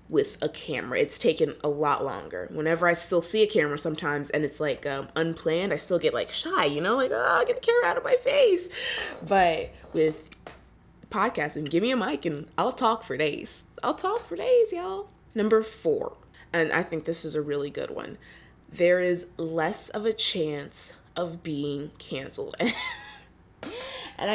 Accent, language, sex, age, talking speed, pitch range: American, English, female, 20-39, 185 wpm, 150-220 Hz